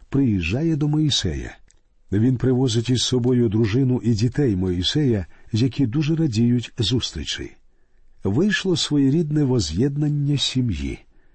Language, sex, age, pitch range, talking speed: Ukrainian, male, 50-69, 105-135 Hz, 100 wpm